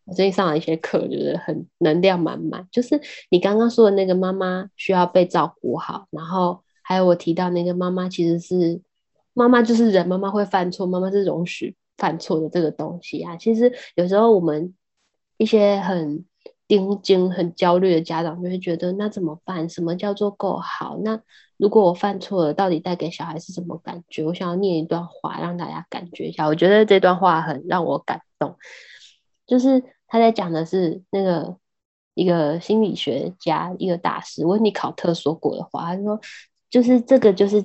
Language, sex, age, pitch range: Chinese, female, 10-29, 170-200 Hz